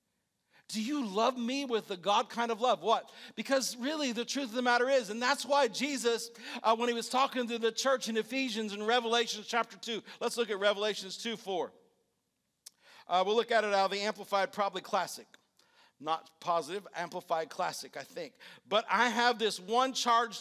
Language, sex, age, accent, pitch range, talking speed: English, male, 50-69, American, 210-250 Hz, 195 wpm